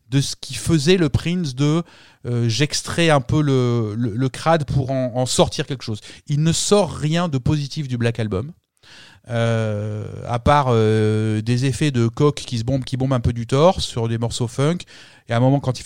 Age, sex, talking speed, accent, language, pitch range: 30-49, male, 215 wpm, French, French, 110-140 Hz